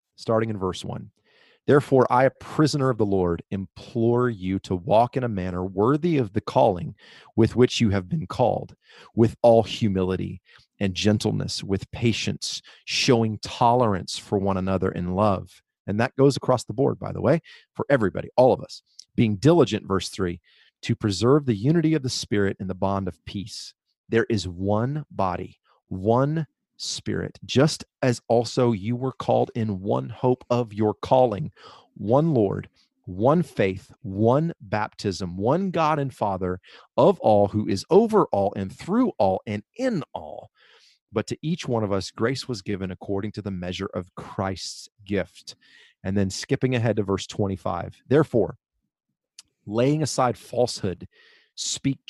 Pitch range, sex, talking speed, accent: 100-130 Hz, male, 160 wpm, American